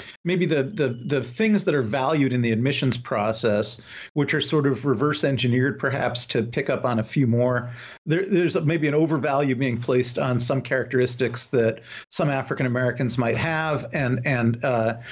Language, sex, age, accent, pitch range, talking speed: English, male, 40-59, American, 115-145 Hz, 180 wpm